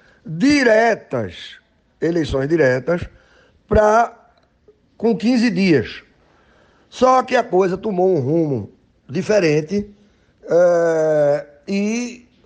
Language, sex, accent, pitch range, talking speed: Portuguese, male, Brazilian, 180-235 Hz, 70 wpm